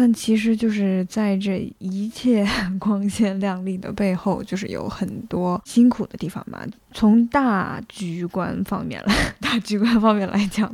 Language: Chinese